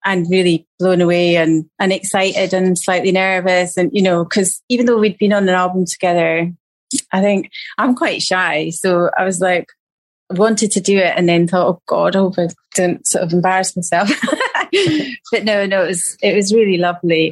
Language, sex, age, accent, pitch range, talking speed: English, female, 30-49, British, 175-200 Hz, 200 wpm